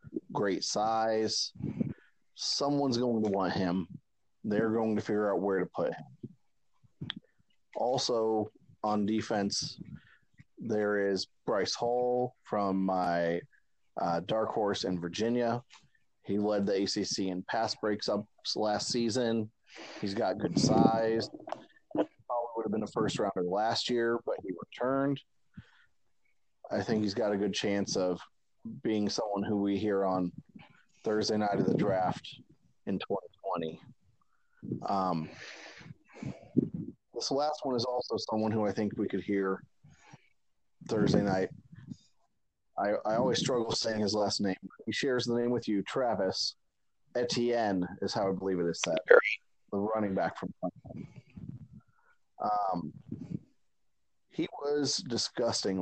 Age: 30-49